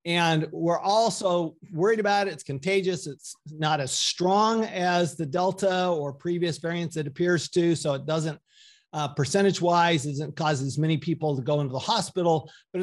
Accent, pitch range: American, 155-190 Hz